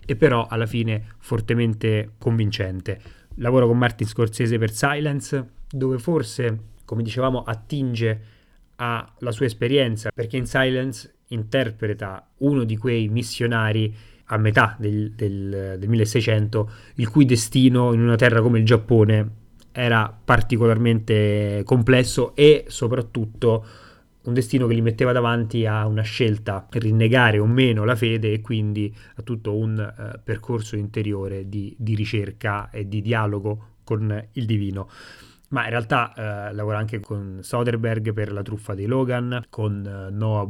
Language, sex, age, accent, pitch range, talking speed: Italian, male, 30-49, native, 105-120 Hz, 140 wpm